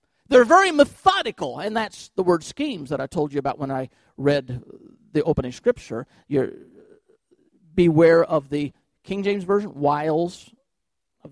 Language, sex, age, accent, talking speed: English, male, 50-69, American, 150 wpm